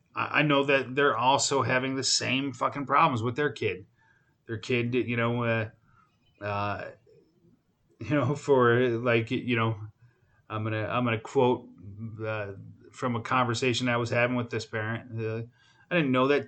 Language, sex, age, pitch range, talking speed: English, male, 30-49, 115-130 Hz, 165 wpm